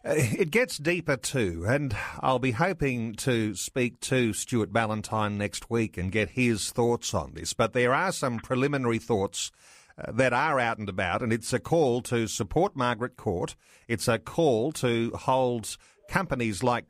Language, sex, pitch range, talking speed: English, male, 115-140 Hz, 165 wpm